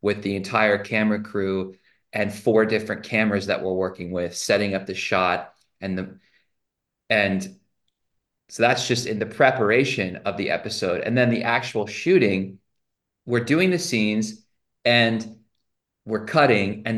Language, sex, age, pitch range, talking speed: English, male, 30-49, 95-115 Hz, 150 wpm